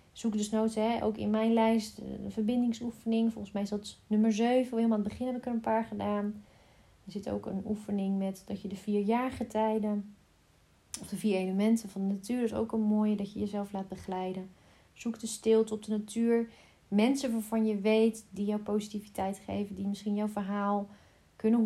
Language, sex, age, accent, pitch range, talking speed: Dutch, female, 30-49, Dutch, 195-220 Hz, 200 wpm